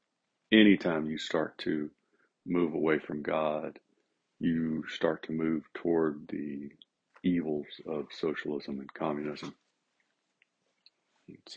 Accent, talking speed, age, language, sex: American, 105 wpm, 40-59, English, male